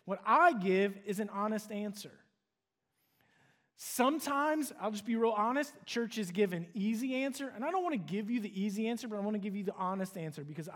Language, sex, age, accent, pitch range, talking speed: English, male, 30-49, American, 185-230 Hz, 210 wpm